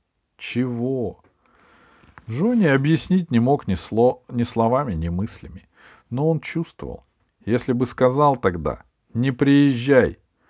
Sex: male